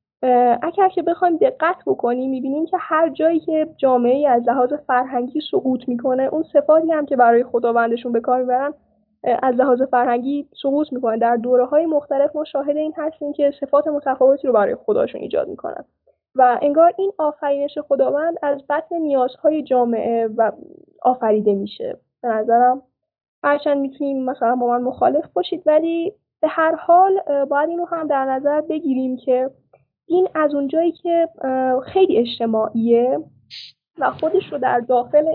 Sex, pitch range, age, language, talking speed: female, 245-320 Hz, 10-29, Persian, 150 wpm